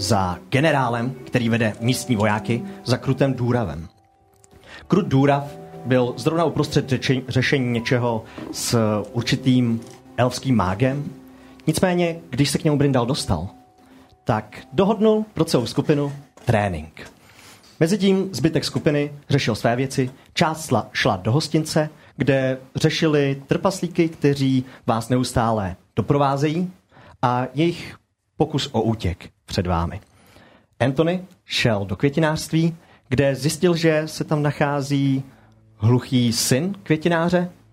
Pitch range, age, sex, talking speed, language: 115-155 Hz, 30-49, male, 110 wpm, Czech